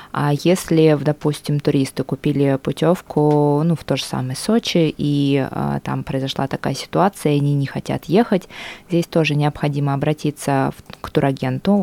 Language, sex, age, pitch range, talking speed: Russian, female, 20-39, 140-160 Hz, 150 wpm